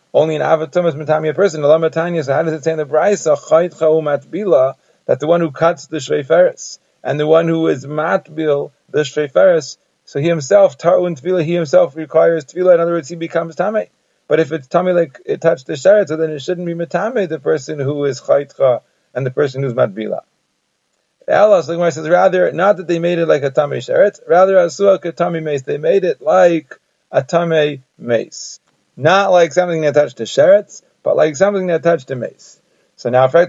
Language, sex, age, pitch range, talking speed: English, male, 40-59, 150-180 Hz, 195 wpm